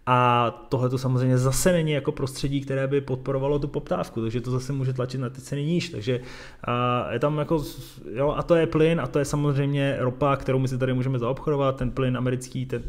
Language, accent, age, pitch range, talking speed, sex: Czech, native, 20-39, 120-145 Hz, 220 wpm, male